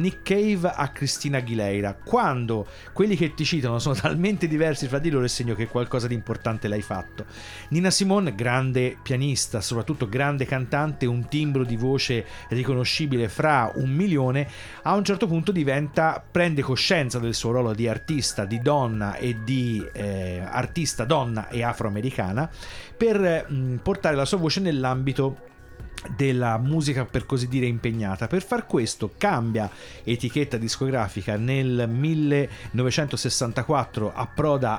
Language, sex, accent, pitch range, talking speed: Italian, male, native, 115-155 Hz, 140 wpm